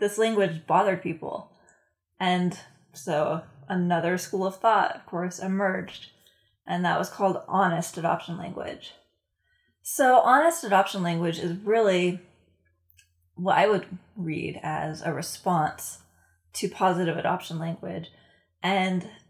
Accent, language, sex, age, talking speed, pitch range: American, English, female, 20-39, 120 wpm, 155-185 Hz